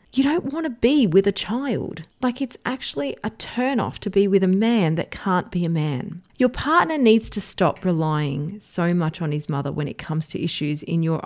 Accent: Australian